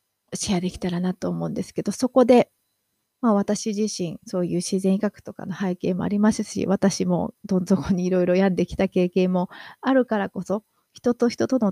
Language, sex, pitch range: Japanese, female, 185-225 Hz